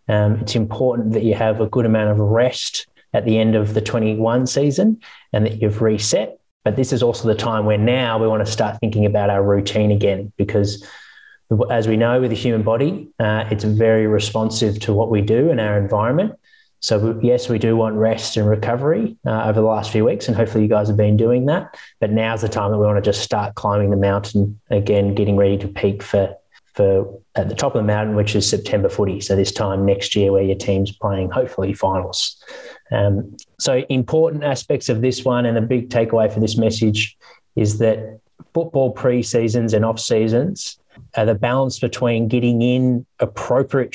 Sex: male